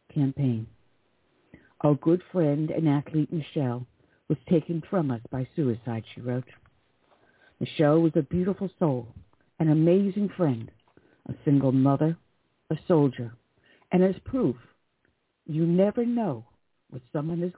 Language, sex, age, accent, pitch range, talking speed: English, female, 60-79, American, 130-170 Hz, 125 wpm